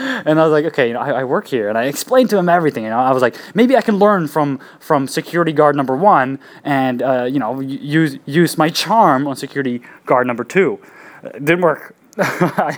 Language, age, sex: English, 20-39, male